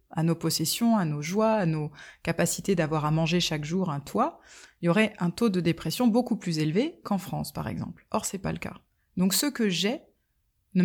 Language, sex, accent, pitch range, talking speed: French, female, French, 165-205 Hz, 225 wpm